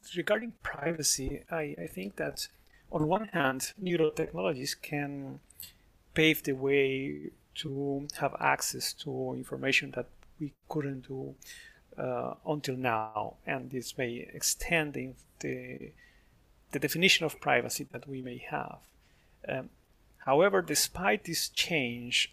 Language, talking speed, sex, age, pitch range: English, 120 wpm, male, 30-49, 125-155 Hz